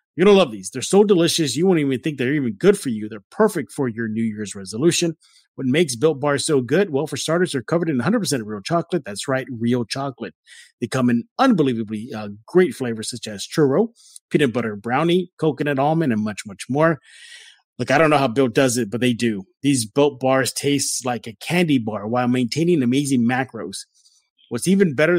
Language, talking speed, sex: English, 210 wpm, male